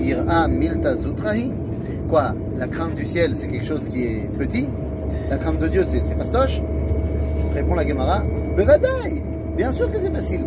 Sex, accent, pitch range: male, French, 80-110 Hz